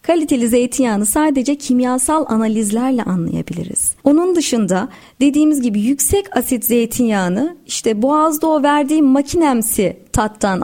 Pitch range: 220-300 Hz